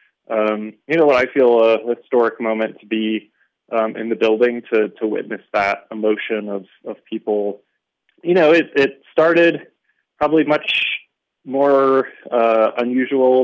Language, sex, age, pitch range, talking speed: English, male, 20-39, 100-120 Hz, 145 wpm